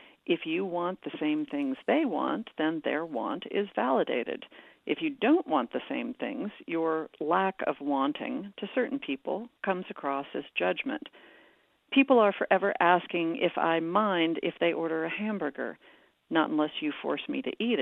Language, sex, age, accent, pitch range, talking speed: English, female, 50-69, American, 165-245 Hz, 170 wpm